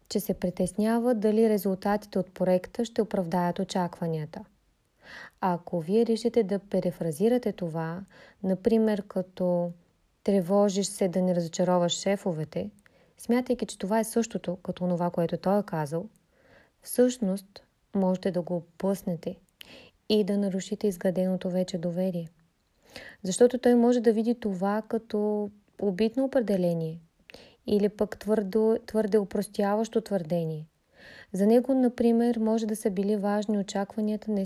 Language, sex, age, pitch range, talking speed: Bulgarian, female, 20-39, 185-220 Hz, 125 wpm